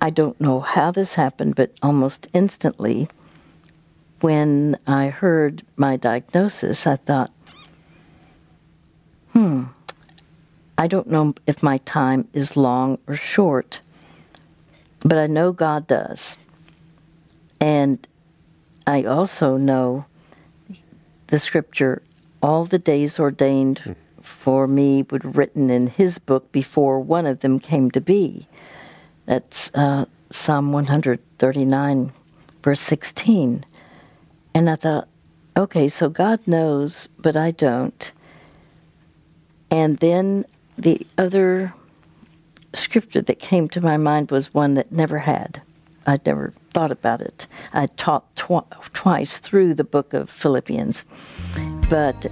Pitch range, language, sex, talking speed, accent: 135-160 Hz, English, female, 120 wpm, American